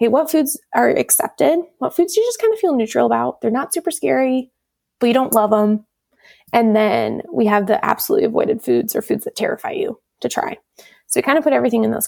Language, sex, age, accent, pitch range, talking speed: English, female, 20-39, American, 210-280 Hz, 235 wpm